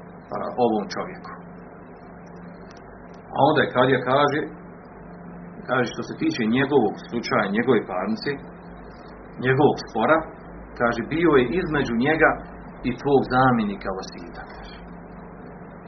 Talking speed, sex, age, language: 105 wpm, male, 40-59, Croatian